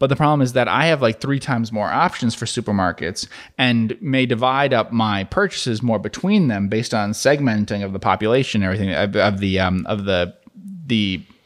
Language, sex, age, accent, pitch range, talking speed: English, male, 30-49, American, 100-125 Hz, 185 wpm